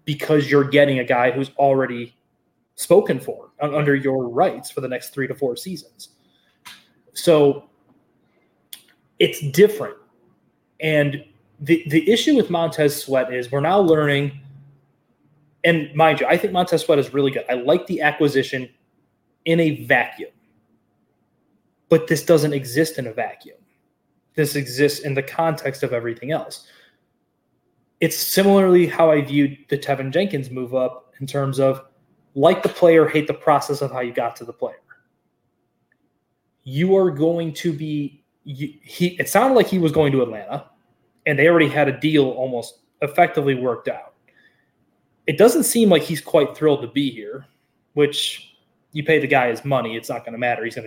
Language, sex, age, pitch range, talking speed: English, male, 20-39, 135-165 Hz, 165 wpm